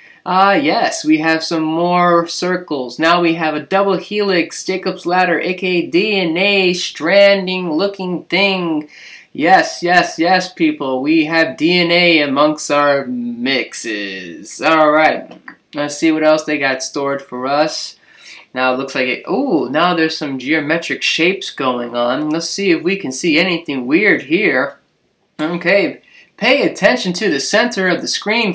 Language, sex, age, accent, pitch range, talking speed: English, male, 20-39, American, 150-200 Hz, 150 wpm